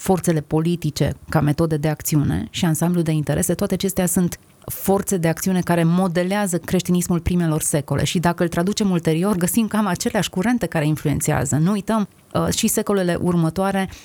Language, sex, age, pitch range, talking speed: Romanian, female, 30-49, 160-190 Hz, 160 wpm